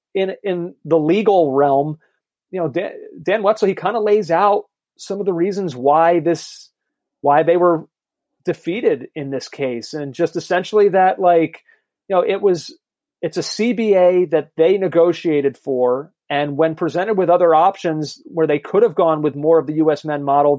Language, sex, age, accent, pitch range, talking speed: English, male, 30-49, American, 155-185 Hz, 180 wpm